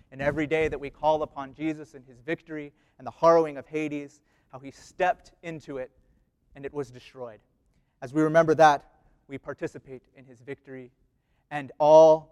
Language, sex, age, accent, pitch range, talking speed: English, male, 30-49, American, 135-155 Hz, 175 wpm